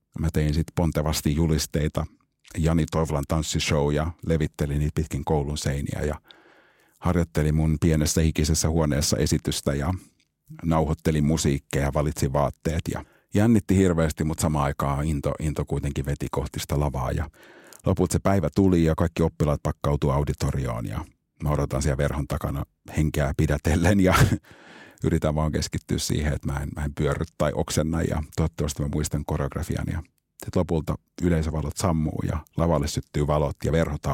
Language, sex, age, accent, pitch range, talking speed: Finnish, male, 50-69, native, 75-80 Hz, 150 wpm